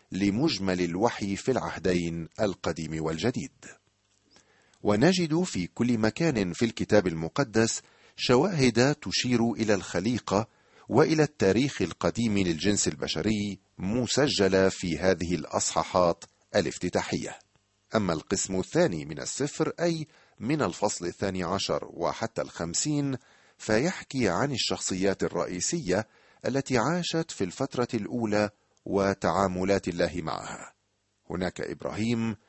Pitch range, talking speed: 85-115 Hz, 100 wpm